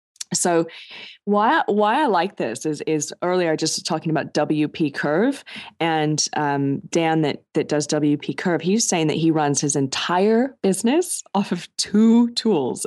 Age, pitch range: 20-39, 150-185 Hz